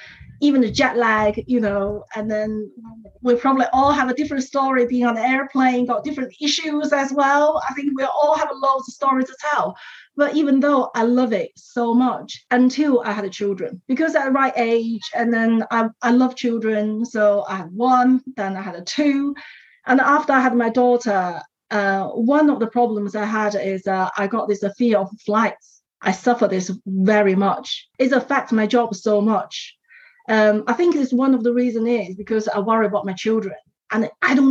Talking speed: 205 wpm